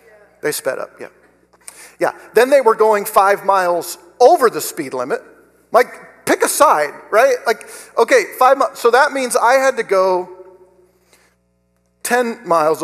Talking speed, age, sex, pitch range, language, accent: 155 wpm, 50-69, male, 185-275 Hz, English, American